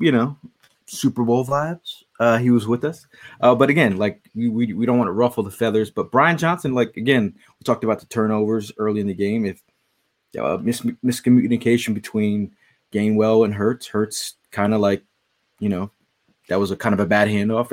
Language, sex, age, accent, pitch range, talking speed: English, male, 20-39, American, 110-135 Hz, 200 wpm